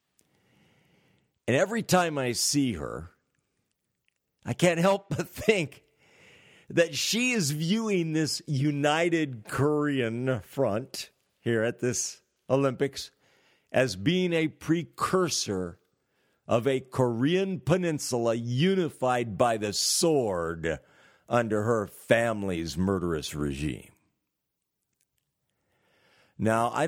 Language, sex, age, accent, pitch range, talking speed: English, male, 50-69, American, 115-165 Hz, 95 wpm